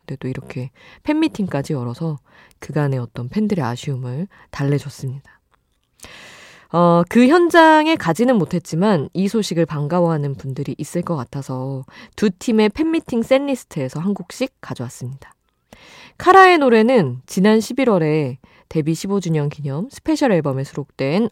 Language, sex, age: Korean, female, 20-39